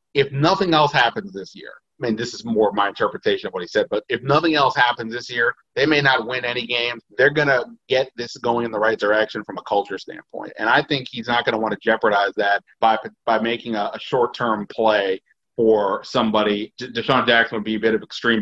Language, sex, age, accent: English, male, 30-49, American